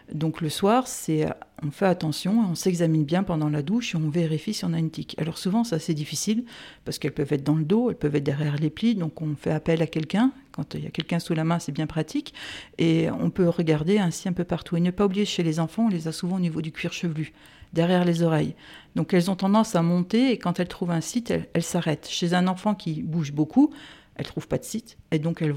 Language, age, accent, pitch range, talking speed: French, 50-69, French, 160-200 Hz, 265 wpm